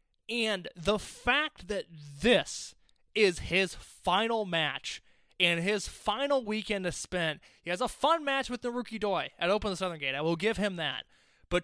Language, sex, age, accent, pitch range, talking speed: English, male, 20-39, American, 170-225 Hz, 175 wpm